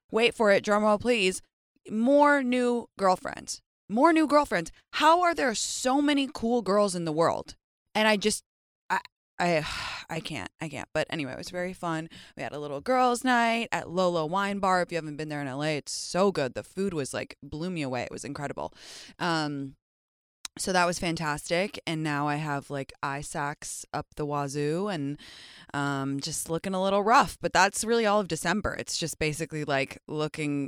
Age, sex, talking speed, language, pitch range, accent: 20-39, female, 195 wpm, English, 140-195 Hz, American